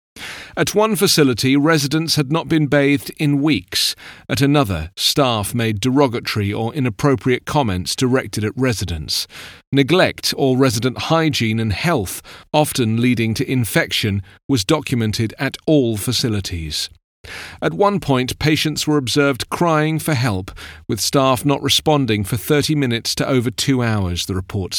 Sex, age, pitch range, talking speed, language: male, 40-59, 110-145 Hz, 140 wpm, English